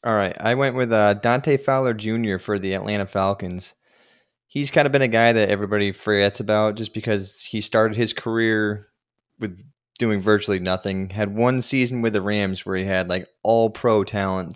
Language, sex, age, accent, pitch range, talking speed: English, male, 20-39, American, 95-115 Hz, 185 wpm